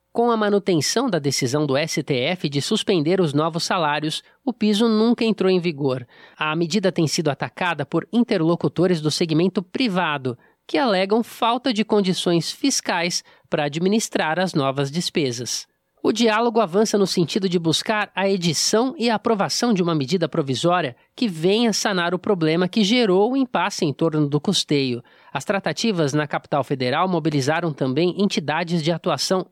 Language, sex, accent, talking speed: Portuguese, male, Brazilian, 155 wpm